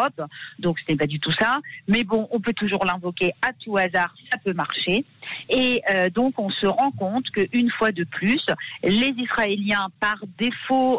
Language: French